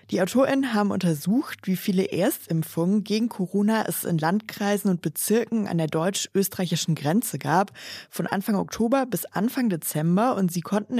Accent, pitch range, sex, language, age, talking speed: German, 170-215 Hz, female, German, 20-39, 155 wpm